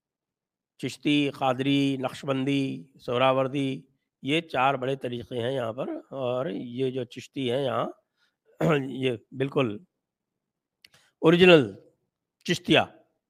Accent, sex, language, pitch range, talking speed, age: Indian, male, English, 120-165 Hz, 95 wpm, 60-79